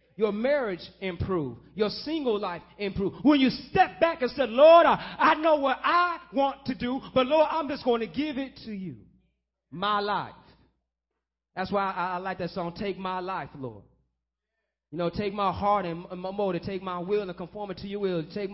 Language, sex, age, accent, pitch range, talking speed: English, male, 30-49, American, 165-210 Hz, 205 wpm